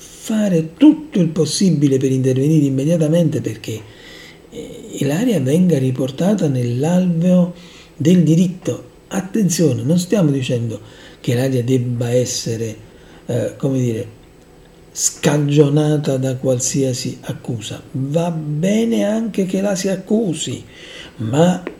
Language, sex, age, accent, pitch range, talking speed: Italian, male, 60-79, native, 125-170 Hz, 100 wpm